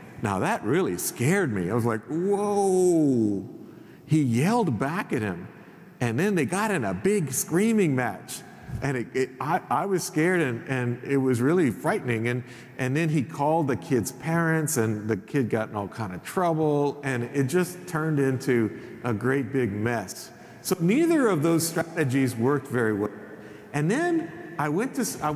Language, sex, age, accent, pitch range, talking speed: English, male, 50-69, American, 135-195 Hz, 170 wpm